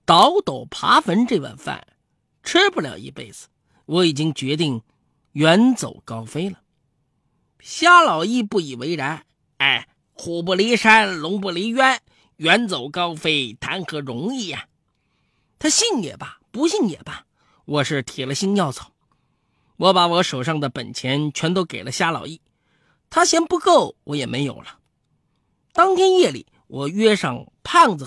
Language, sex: Chinese, male